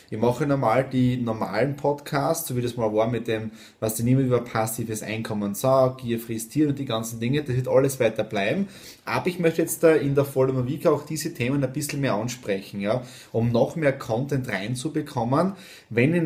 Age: 20-39